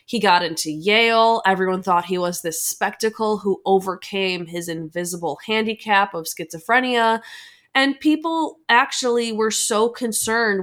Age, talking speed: 20-39, 130 wpm